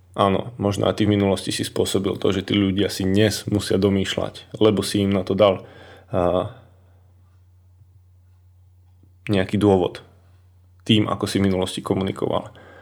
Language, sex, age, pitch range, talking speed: Slovak, male, 20-39, 90-105 Hz, 140 wpm